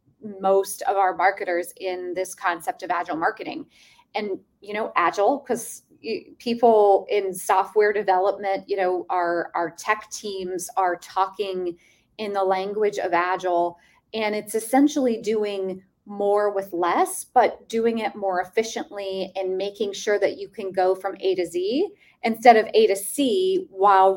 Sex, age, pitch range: female, 30-49, 190-230 Hz